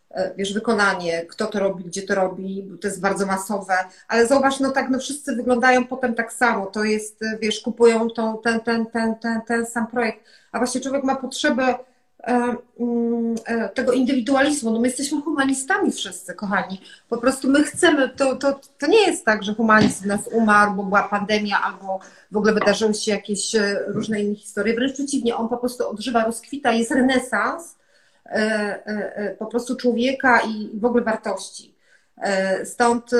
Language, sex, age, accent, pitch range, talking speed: Polish, female, 30-49, native, 215-265 Hz, 170 wpm